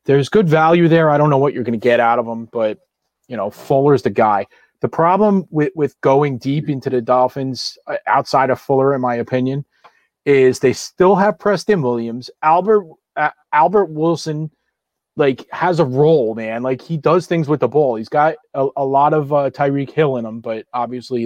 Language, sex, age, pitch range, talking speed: English, male, 30-49, 120-155 Hz, 205 wpm